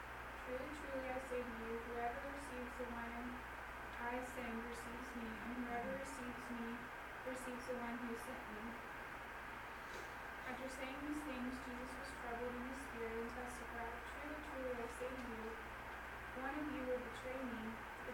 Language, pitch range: English, 240-260 Hz